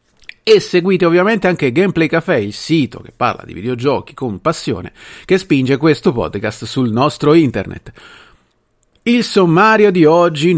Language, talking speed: Italian, 140 wpm